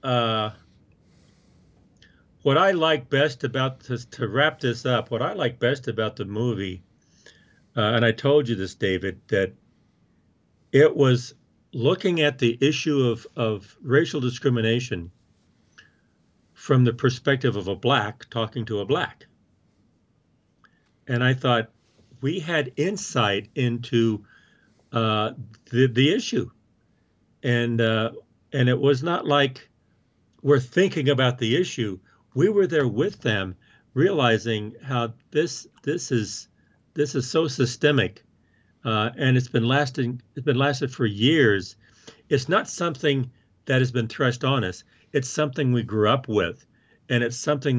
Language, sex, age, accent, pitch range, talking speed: English, male, 50-69, American, 110-140 Hz, 140 wpm